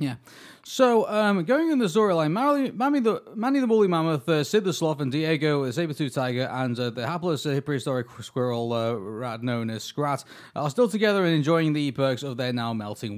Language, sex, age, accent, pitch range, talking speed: English, male, 30-49, British, 130-175 Hz, 200 wpm